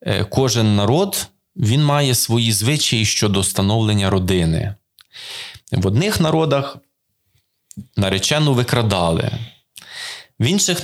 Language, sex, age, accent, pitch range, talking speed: Ukrainian, male, 20-39, native, 100-125 Hz, 90 wpm